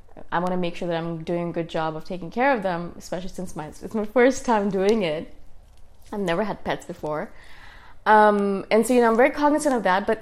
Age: 20-39